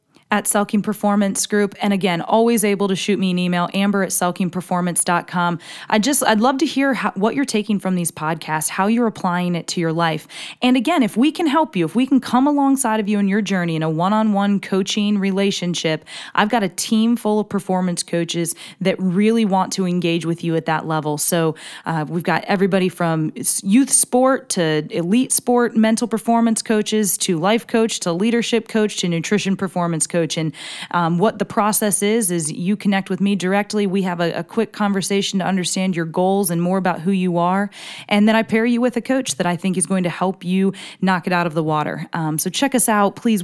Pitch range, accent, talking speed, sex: 175-215 Hz, American, 210 wpm, female